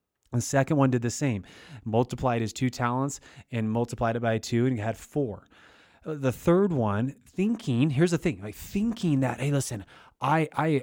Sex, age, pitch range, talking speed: male, 30-49, 115-150 Hz, 185 wpm